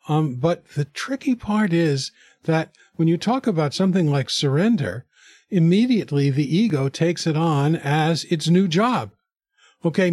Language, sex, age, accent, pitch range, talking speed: English, male, 50-69, American, 135-175 Hz, 150 wpm